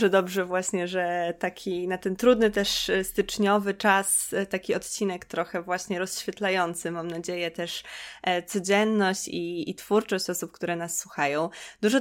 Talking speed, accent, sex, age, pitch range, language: 135 wpm, native, female, 20-39, 180-210 Hz, Polish